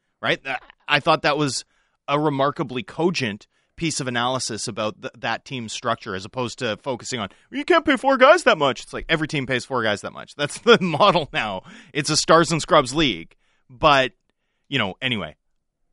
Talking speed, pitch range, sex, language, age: 190 wpm, 120-160 Hz, male, English, 30-49